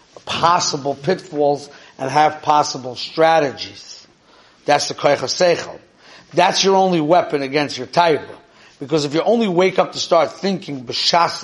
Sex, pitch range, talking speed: male, 135-170 Hz, 140 wpm